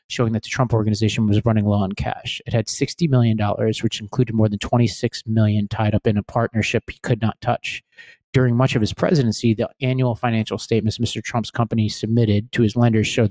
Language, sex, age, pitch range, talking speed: English, male, 30-49, 105-120 Hz, 205 wpm